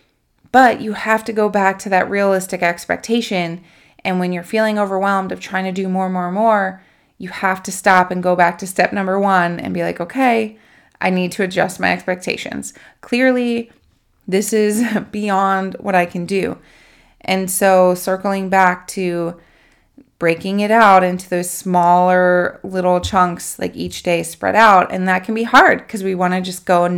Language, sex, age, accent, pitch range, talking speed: English, female, 20-39, American, 180-210 Hz, 180 wpm